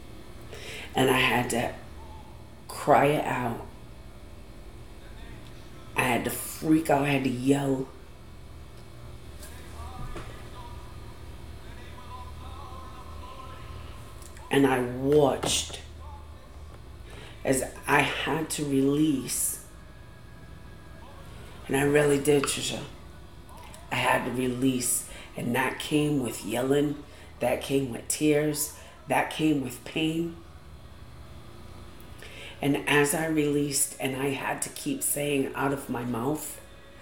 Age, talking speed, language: 40-59, 95 wpm, English